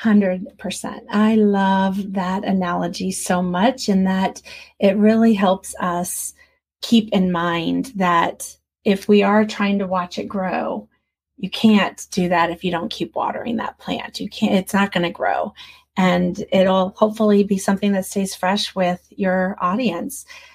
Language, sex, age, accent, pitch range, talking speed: English, female, 30-49, American, 175-200 Hz, 160 wpm